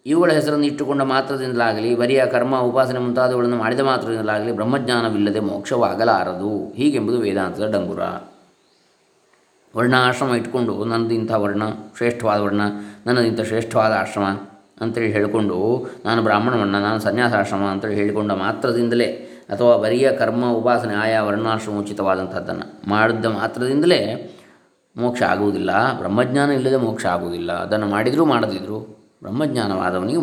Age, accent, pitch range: 20-39, native, 110-140 Hz